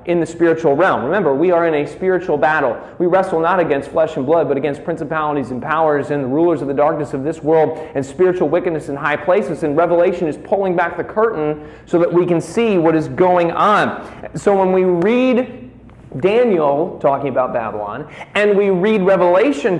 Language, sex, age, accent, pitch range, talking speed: English, male, 40-59, American, 150-180 Hz, 200 wpm